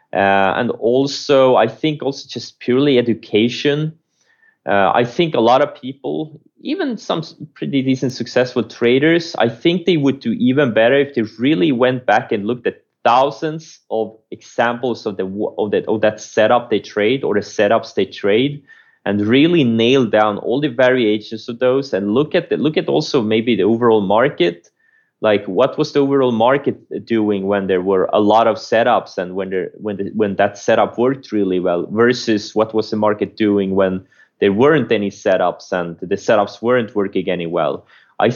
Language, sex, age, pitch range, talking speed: English, male, 30-49, 105-140 Hz, 185 wpm